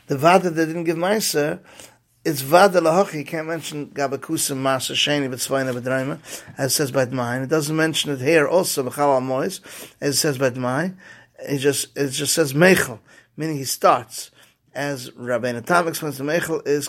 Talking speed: 165 wpm